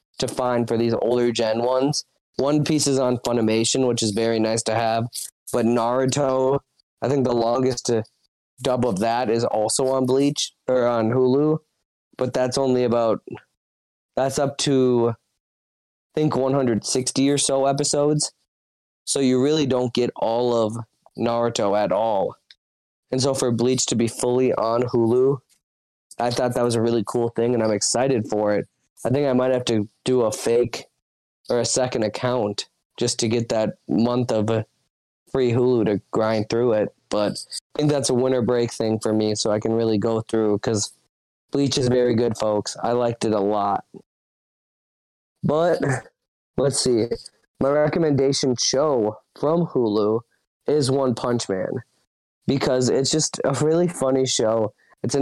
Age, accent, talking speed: 20-39, American, 165 wpm